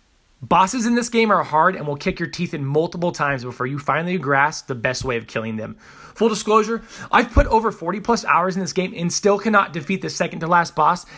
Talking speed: 235 wpm